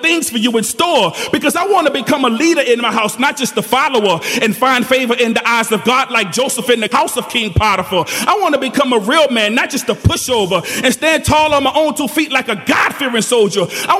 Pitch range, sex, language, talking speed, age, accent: 215-280 Hz, male, English, 255 wpm, 30-49, American